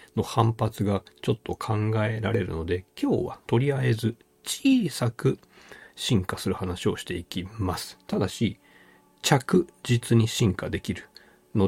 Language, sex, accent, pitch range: Japanese, male, native, 90-120 Hz